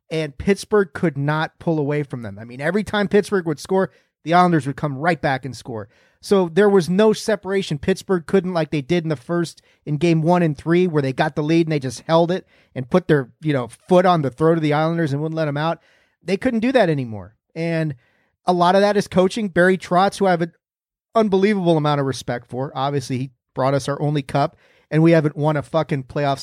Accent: American